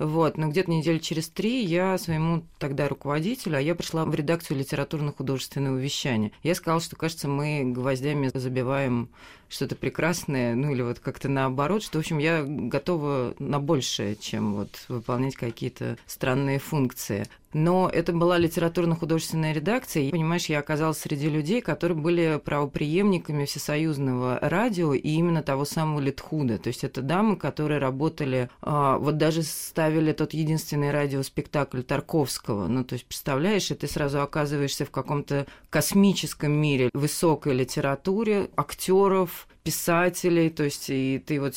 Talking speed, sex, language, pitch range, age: 145 wpm, female, Russian, 135-170 Hz, 20-39